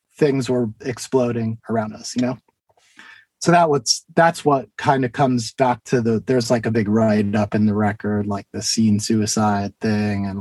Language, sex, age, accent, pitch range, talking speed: English, male, 30-49, American, 115-145 Hz, 190 wpm